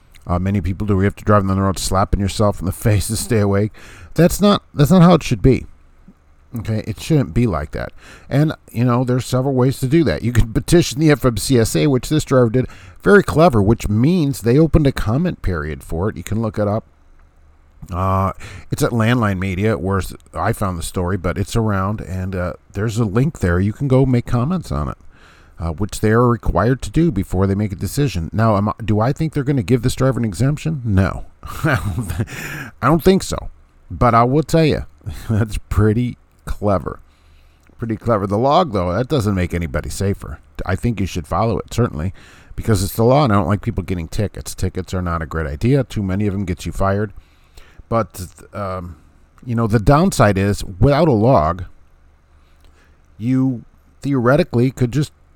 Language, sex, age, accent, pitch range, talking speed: English, male, 50-69, American, 90-125 Hz, 200 wpm